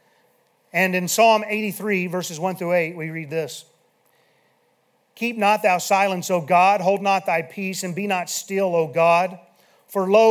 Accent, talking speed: American, 165 wpm